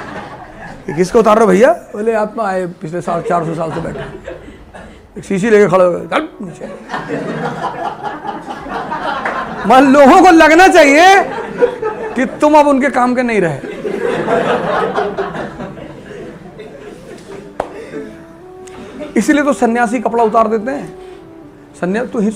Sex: male